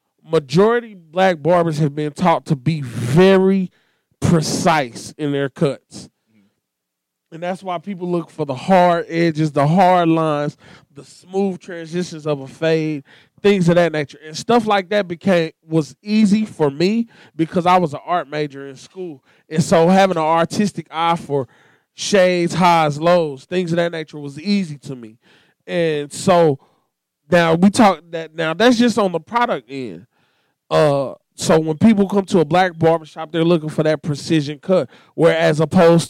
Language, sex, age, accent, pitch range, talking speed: English, male, 20-39, American, 150-180 Hz, 165 wpm